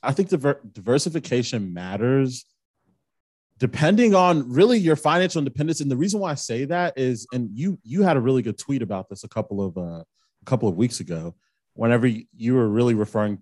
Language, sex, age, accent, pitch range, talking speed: English, male, 30-49, American, 105-150 Hz, 190 wpm